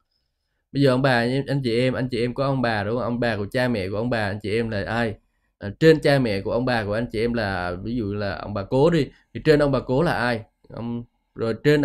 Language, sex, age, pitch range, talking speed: Vietnamese, male, 20-39, 105-150 Hz, 290 wpm